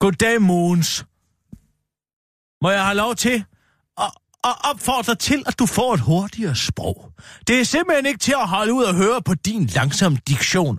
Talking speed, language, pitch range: 180 wpm, Danish, 180-245 Hz